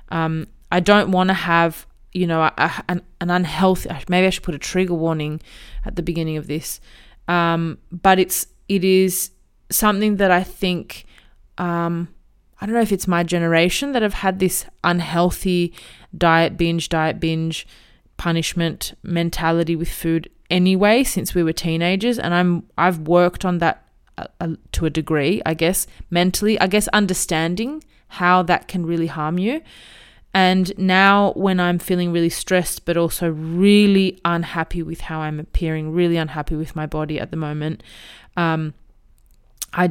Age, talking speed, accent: 20-39, 160 wpm, Australian